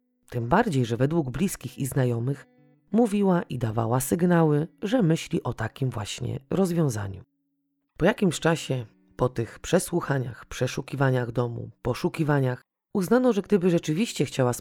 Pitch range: 125-180 Hz